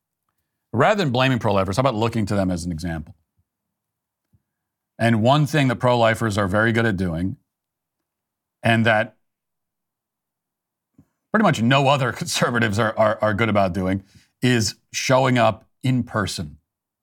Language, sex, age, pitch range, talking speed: English, male, 40-59, 100-125 Hz, 140 wpm